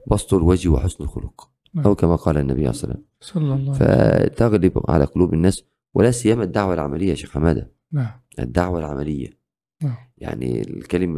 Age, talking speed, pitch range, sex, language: 50-69, 170 wpm, 85-120 Hz, male, Arabic